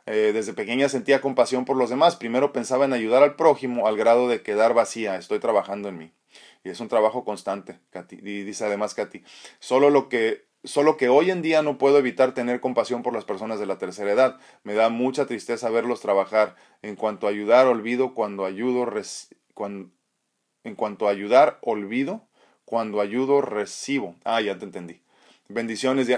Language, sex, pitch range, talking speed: Spanish, male, 110-135 Hz, 185 wpm